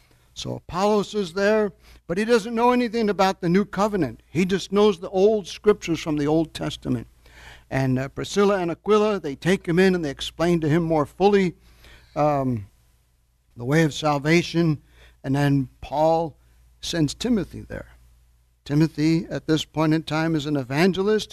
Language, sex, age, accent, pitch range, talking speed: English, male, 60-79, American, 130-180 Hz, 165 wpm